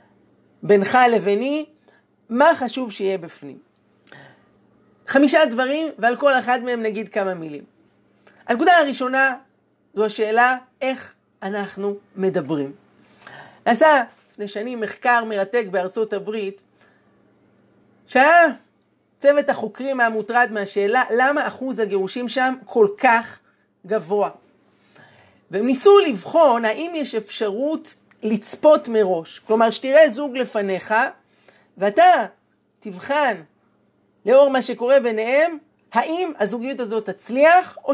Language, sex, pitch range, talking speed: Hebrew, male, 210-275 Hz, 100 wpm